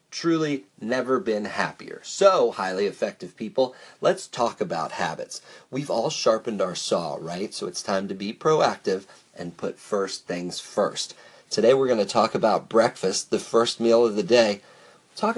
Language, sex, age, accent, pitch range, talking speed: English, male, 40-59, American, 100-145 Hz, 170 wpm